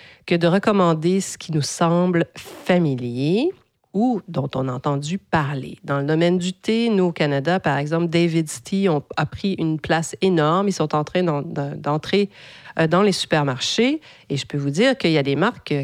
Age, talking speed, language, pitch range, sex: 40-59, 185 wpm, French, 145-185 Hz, female